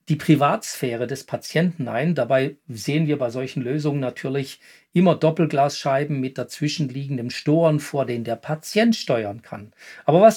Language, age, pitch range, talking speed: German, 40-59, 140-180 Hz, 150 wpm